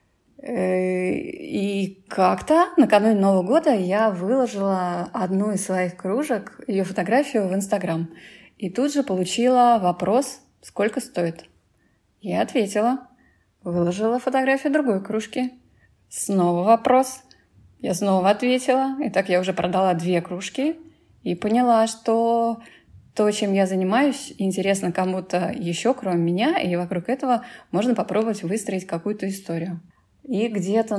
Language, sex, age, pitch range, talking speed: Russian, female, 20-39, 180-235 Hz, 120 wpm